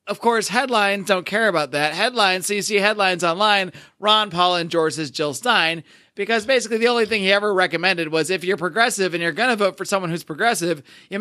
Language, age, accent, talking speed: English, 30-49, American, 220 wpm